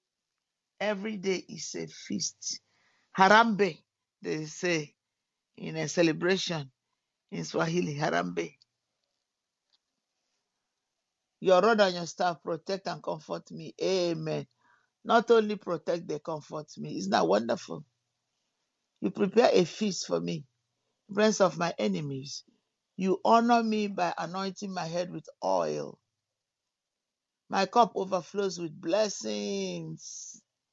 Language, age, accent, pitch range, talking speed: English, 50-69, Nigerian, 150-210 Hz, 110 wpm